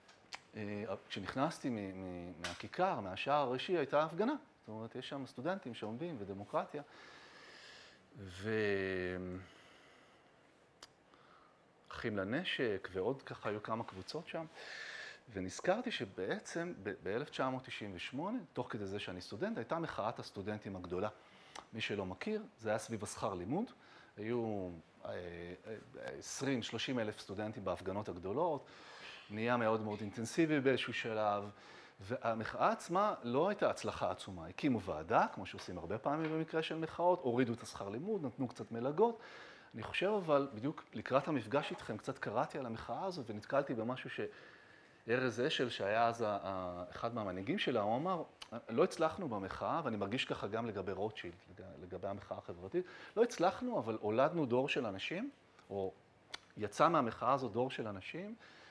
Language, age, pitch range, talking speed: Hebrew, 30-49, 100-145 Hz, 115 wpm